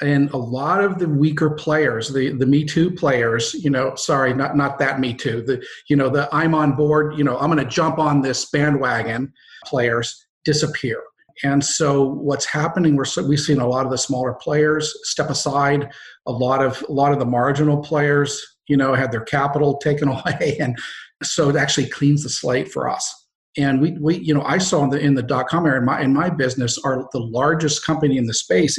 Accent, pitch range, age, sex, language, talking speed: American, 130-150 Hz, 50-69, male, English, 215 wpm